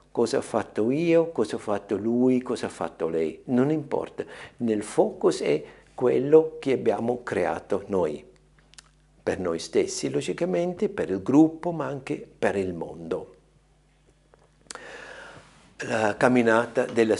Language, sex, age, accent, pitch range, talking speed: Italian, male, 60-79, native, 105-170 Hz, 130 wpm